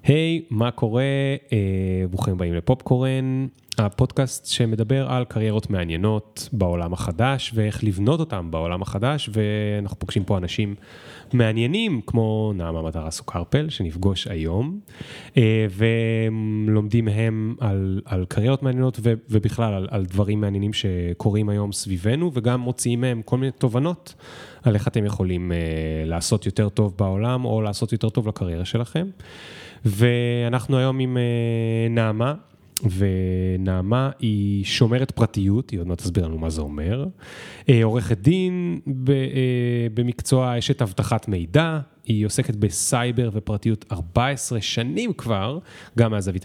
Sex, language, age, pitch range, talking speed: male, Hebrew, 30-49, 100-130 Hz, 130 wpm